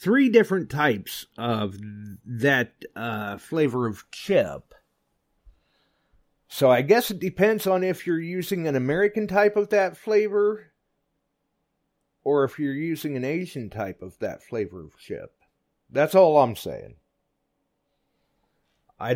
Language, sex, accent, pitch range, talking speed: English, male, American, 110-160 Hz, 130 wpm